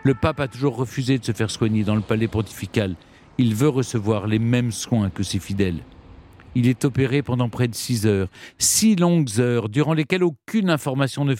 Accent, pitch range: French, 110-145 Hz